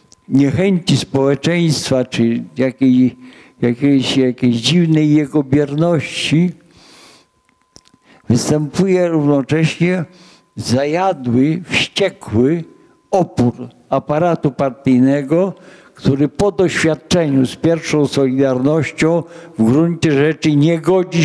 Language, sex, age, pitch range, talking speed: Polish, male, 60-79, 135-165 Hz, 75 wpm